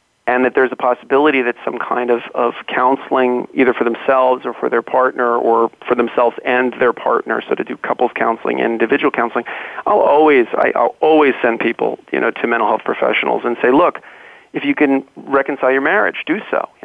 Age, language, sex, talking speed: 40-59, English, male, 205 wpm